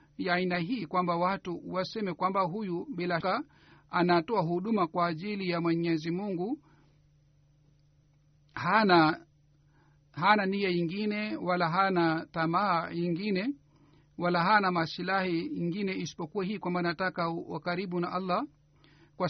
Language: Swahili